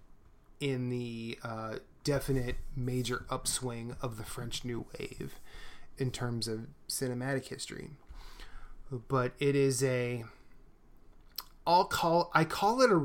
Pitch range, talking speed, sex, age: 120-135 Hz, 120 wpm, male, 20-39